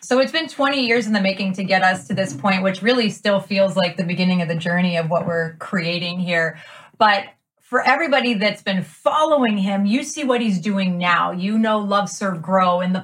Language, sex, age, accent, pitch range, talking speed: English, female, 30-49, American, 195-265 Hz, 225 wpm